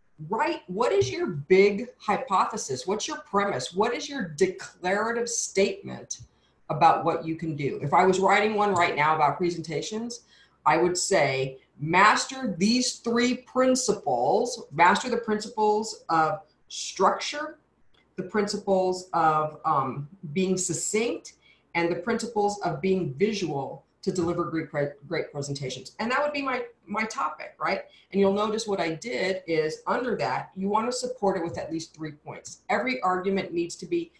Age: 40-59